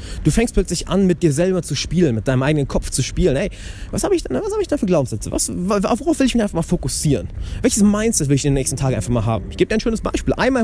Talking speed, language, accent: 275 wpm, German, German